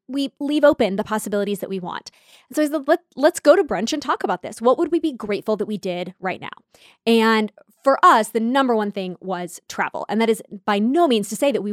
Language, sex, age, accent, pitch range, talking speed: English, female, 20-39, American, 195-250 Hz, 245 wpm